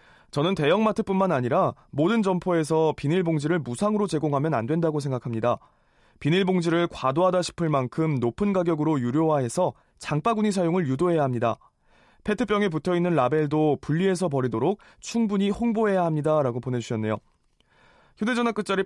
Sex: male